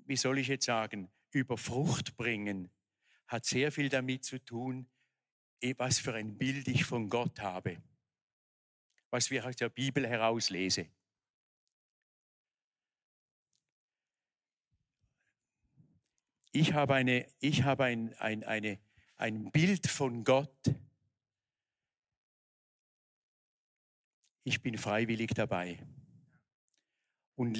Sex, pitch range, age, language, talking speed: male, 115-140 Hz, 50-69, German, 100 wpm